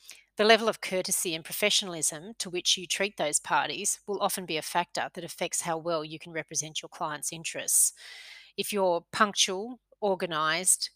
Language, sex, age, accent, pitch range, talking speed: English, female, 30-49, Australian, 160-200 Hz, 170 wpm